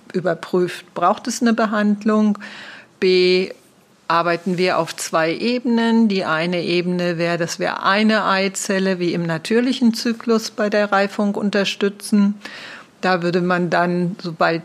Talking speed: 130 wpm